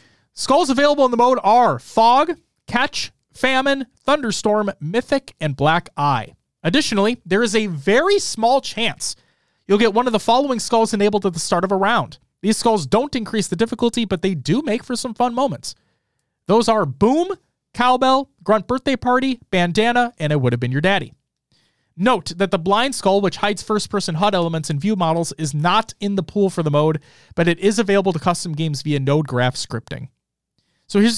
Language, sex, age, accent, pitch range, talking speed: English, male, 30-49, American, 160-235 Hz, 190 wpm